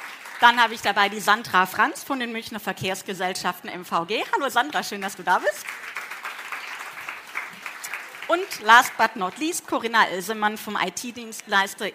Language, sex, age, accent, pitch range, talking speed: German, female, 30-49, German, 210-285 Hz, 140 wpm